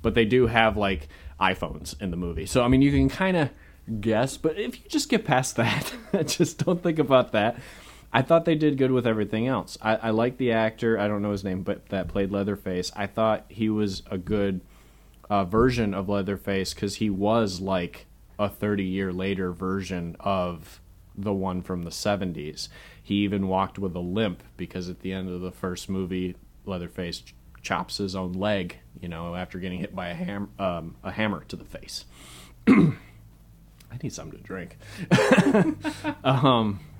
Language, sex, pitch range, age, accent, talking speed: English, male, 95-115 Hz, 30-49, American, 185 wpm